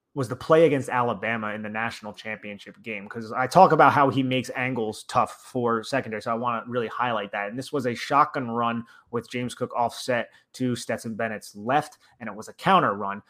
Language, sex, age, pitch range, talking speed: English, male, 30-49, 120-140 Hz, 215 wpm